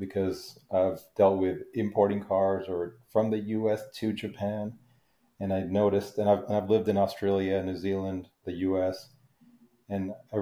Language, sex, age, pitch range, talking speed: English, male, 40-59, 90-105 Hz, 160 wpm